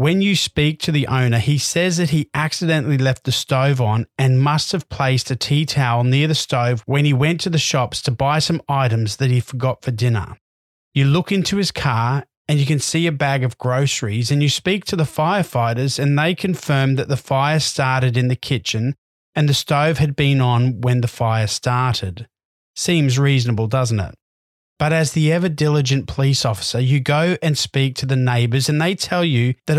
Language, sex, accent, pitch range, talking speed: English, male, Australian, 125-155 Hz, 205 wpm